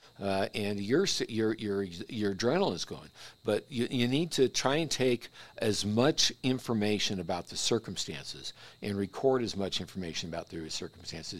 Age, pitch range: 60-79, 100-130 Hz